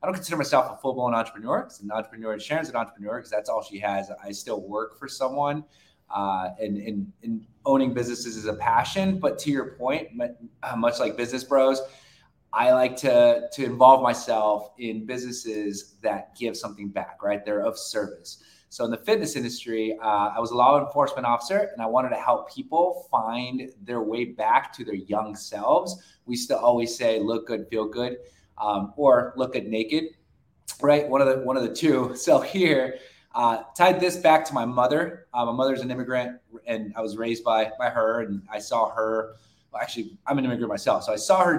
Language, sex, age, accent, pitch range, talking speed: English, male, 20-39, American, 110-145 Hz, 200 wpm